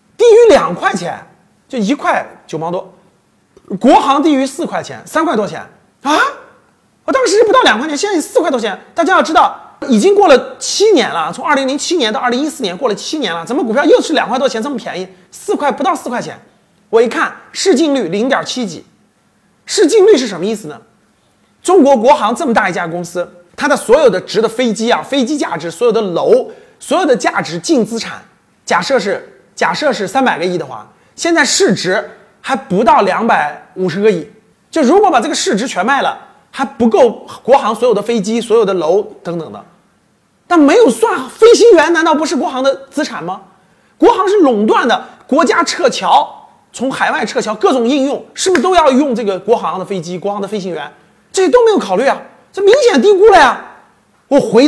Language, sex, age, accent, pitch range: Chinese, male, 30-49, native, 220-370 Hz